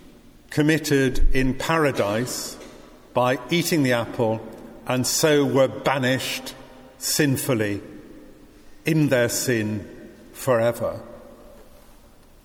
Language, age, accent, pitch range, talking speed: English, 50-69, British, 120-145 Hz, 75 wpm